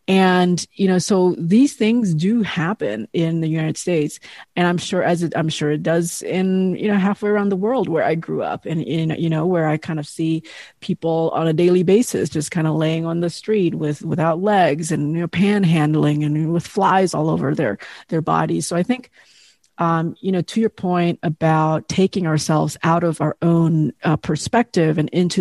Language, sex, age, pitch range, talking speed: English, female, 30-49, 160-190 Hz, 210 wpm